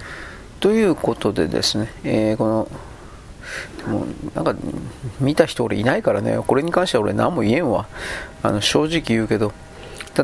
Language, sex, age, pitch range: Japanese, male, 40-59, 115-155 Hz